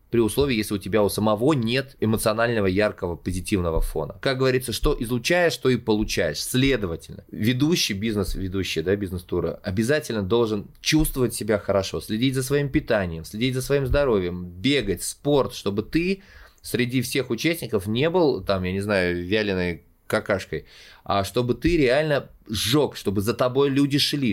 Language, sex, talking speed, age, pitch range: Russian, male, 155 wpm, 20-39, 100-130 Hz